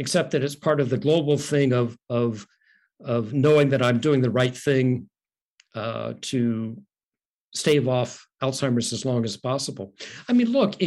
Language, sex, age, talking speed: English, male, 60-79, 165 wpm